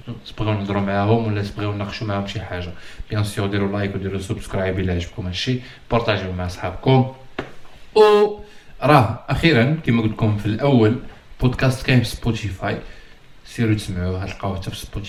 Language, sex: Arabic, male